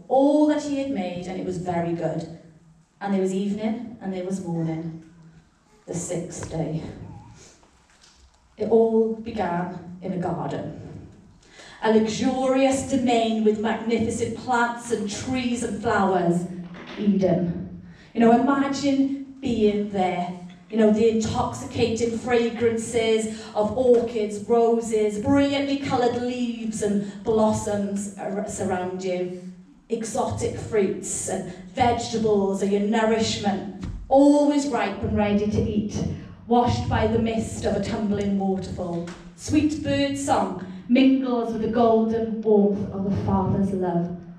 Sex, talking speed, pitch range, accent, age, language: female, 125 wpm, 185-230 Hz, British, 30-49, English